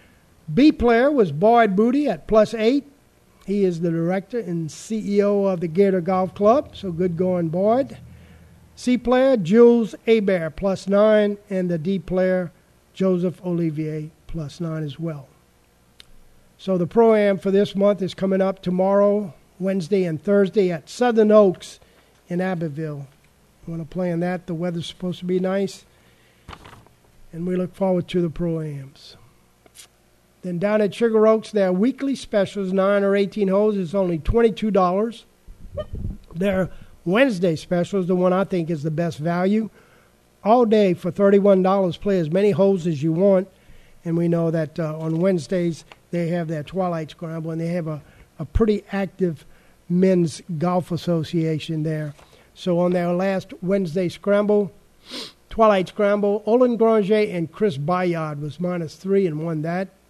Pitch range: 165-205 Hz